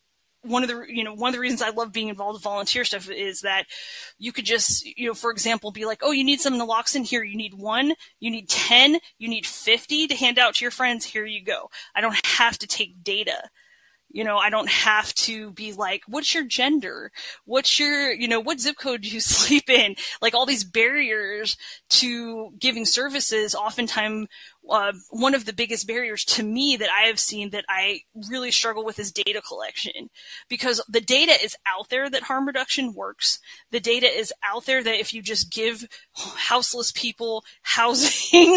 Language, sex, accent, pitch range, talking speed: English, female, American, 215-265 Hz, 200 wpm